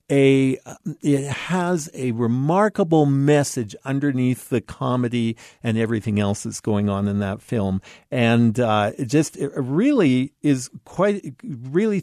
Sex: male